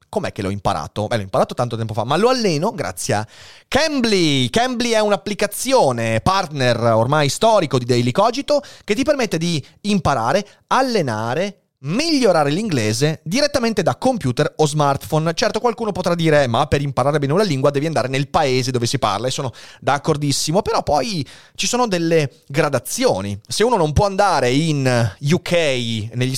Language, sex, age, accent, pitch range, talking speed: Italian, male, 30-49, native, 135-225 Hz, 165 wpm